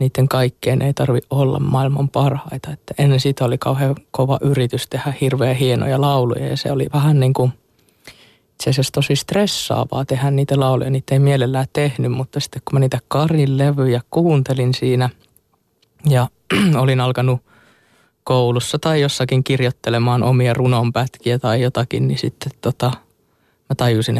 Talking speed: 145 wpm